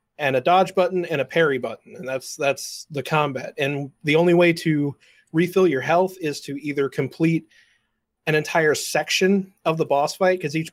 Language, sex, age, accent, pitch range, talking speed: English, male, 30-49, American, 140-175 Hz, 190 wpm